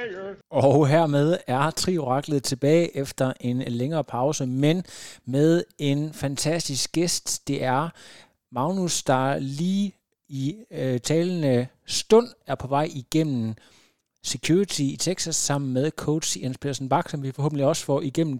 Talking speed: 135 wpm